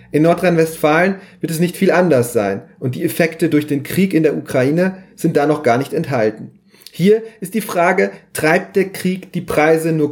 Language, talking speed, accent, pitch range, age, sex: German, 195 wpm, German, 155-180 Hz, 30-49, male